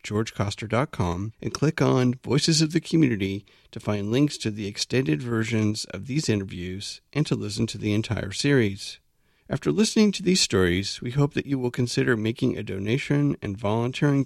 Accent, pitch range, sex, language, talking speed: American, 100-140 Hz, male, English, 175 wpm